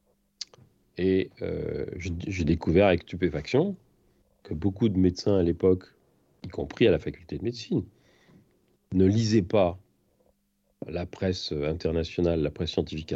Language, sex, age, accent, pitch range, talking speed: French, male, 40-59, French, 85-115 Hz, 130 wpm